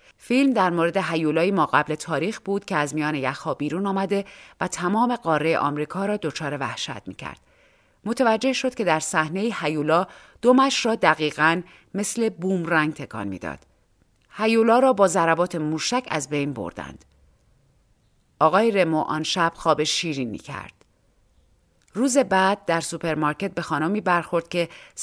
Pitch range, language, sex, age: 150-215 Hz, Persian, female, 40-59